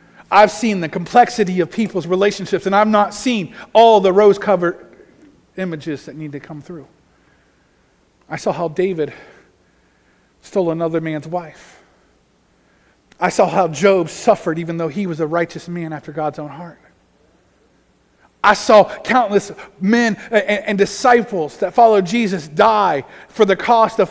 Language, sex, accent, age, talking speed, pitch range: English, male, American, 40-59, 145 wpm, 170-245 Hz